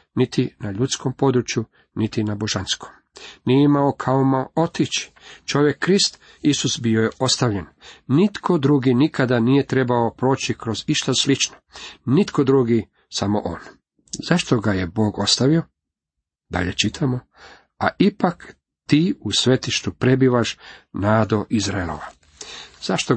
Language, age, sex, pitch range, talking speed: Croatian, 40-59, male, 105-140 Hz, 120 wpm